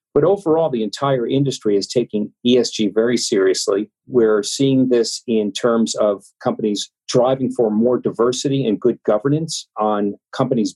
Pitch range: 115-140 Hz